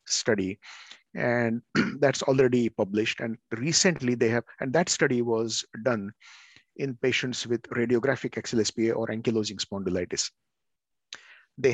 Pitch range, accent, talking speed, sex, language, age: 110-130 Hz, Indian, 120 wpm, male, English, 50-69